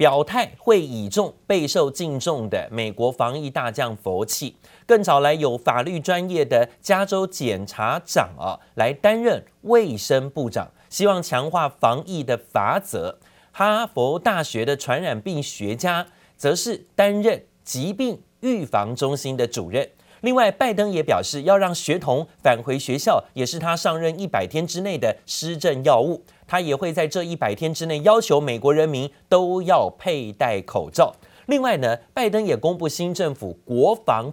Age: 30-49